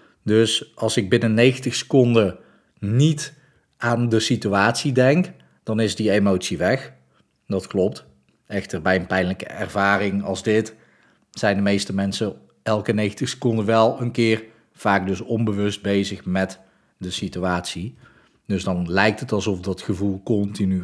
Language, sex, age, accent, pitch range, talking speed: Dutch, male, 40-59, Dutch, 100-120 Hz, 145 wpm